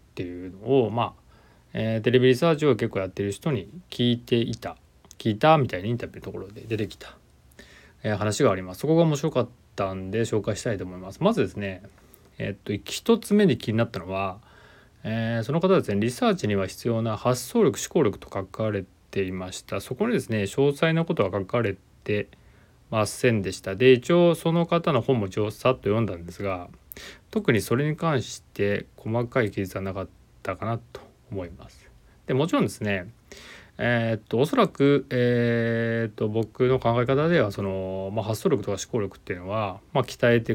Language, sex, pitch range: Japanese, male, 100-130 Hz